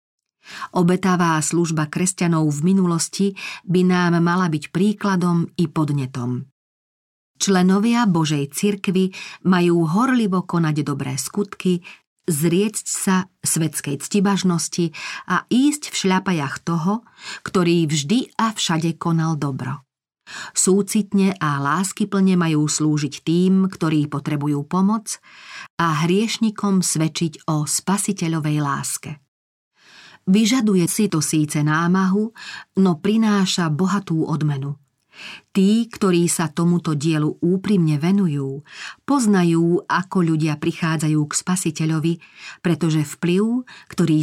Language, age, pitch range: Slovak, 40-59, 155-195 Hz